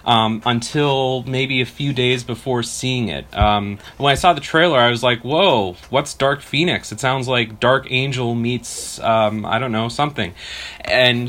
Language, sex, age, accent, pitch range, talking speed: English, male, 30-49, American, 115-150 Hz, 180 wpm